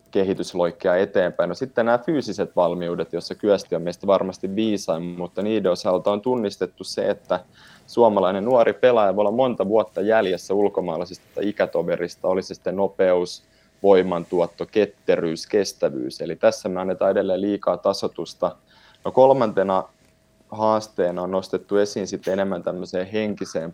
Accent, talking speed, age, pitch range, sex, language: native, 135 wpm, 30-49, 85-100 Hz, male, Finnish